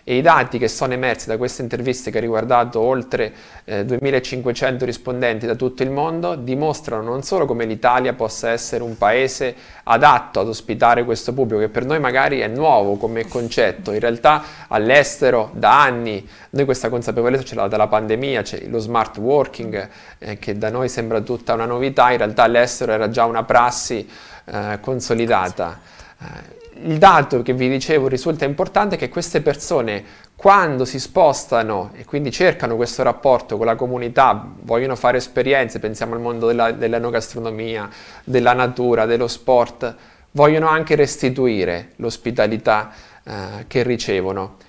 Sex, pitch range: male, 115-130 Hz